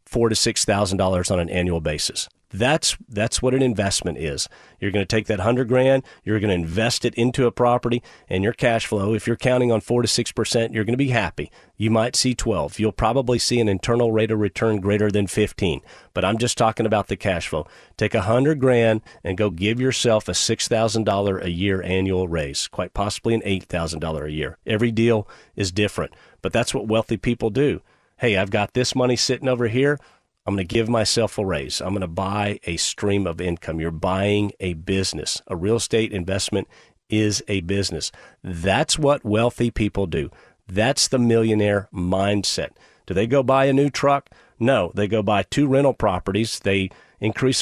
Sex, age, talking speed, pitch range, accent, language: male, 40-59, 200 wpm, 95-120 Hz, American, English